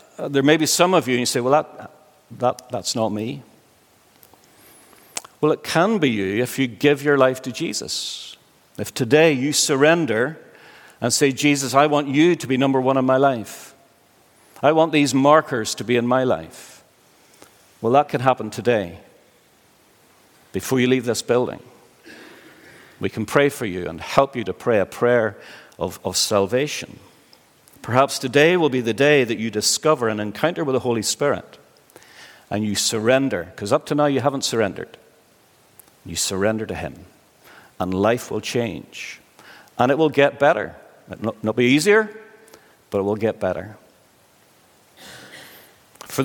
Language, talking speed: English, 165 wpm